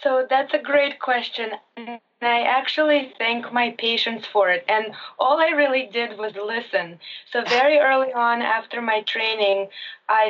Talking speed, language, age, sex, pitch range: 165 wpm, English, 20-39, female, 215-255 Hz